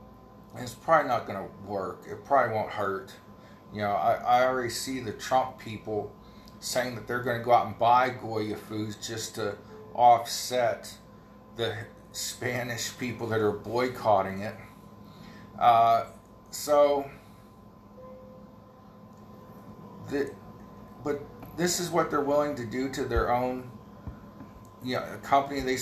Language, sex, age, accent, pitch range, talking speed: English, male, 40-59, American, 105-130 Hz, 135 wpm